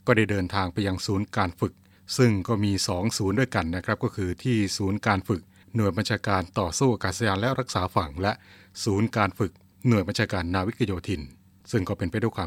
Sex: male